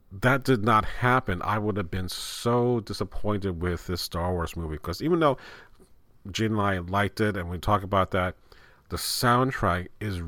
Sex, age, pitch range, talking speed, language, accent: male, 40-59, 95-115 Hz, 180 wpm, English, American